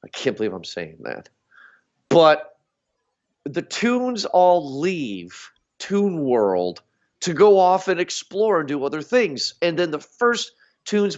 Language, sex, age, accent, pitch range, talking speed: English, male, 40-59, American, 140-200 Hz, 145 wpm